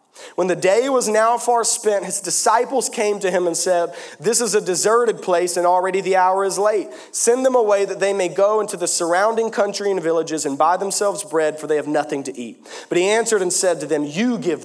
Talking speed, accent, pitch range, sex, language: 235 wpm, American, 165-215 Hz, male, English